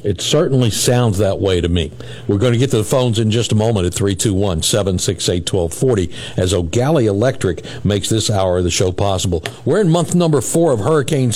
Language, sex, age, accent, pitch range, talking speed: English, male, 60-79, American, 100-125 Hz, 195 wpm